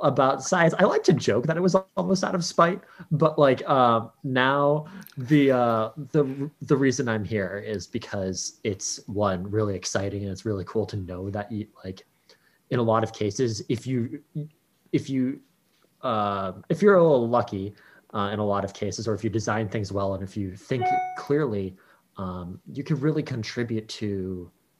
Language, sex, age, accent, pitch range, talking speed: English, male, 30-49, American, 100-135 Hz, 185 wpm